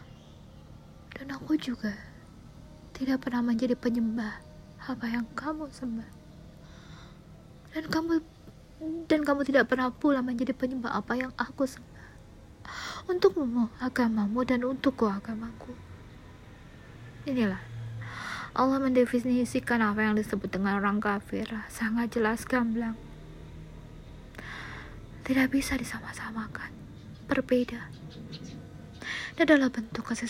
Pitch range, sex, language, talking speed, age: 220-255 Hz, female, Indonesian, 100 wpm, 20-39